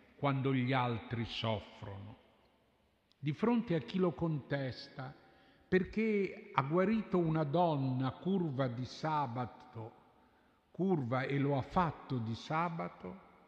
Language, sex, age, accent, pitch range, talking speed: Italian, male, 50-69, native, 125-180 Hz, 110 wpm